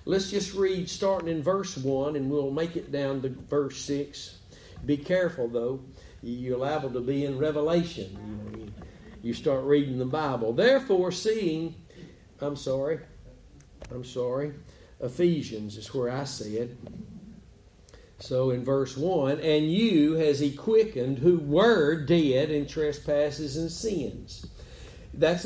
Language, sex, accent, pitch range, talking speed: English, male, American, 135-180 Hz, 135 wpm